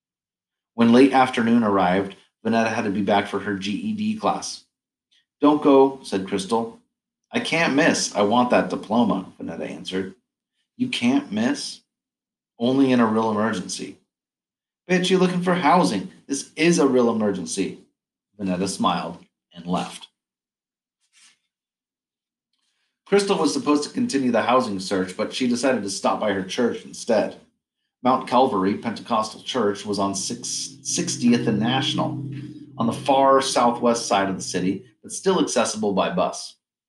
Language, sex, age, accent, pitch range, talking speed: English, male, 40-59, American, 95-135 Hz, 140 wpm